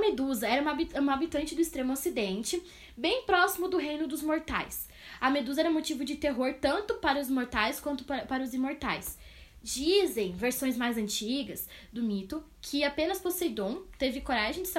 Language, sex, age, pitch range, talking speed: Portuguese, female, 10-29, 235-300 Hz, 160 wpm